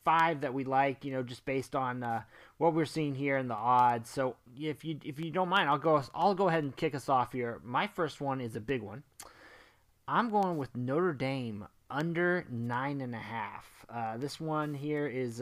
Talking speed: 220 wpm